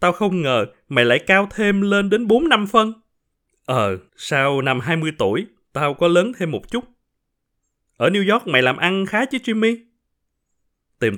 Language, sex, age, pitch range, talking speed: Vietnamese, male, 20-39, 125-185 Hz, 170 wpm